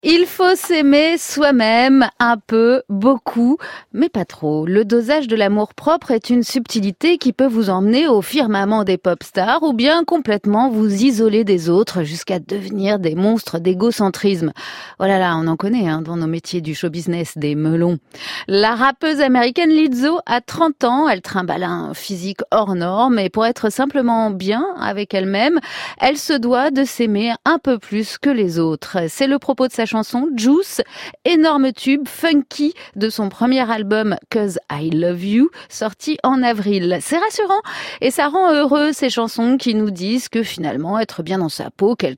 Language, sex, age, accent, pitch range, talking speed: French, female, 30-49, French, 195-275 Hz, 180 wpm